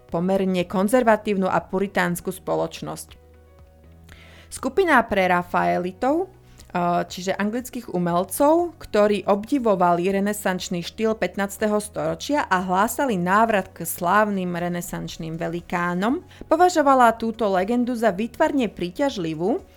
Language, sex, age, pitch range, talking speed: Slovak, female, 30-49, 175-225 Hz, 90 wpm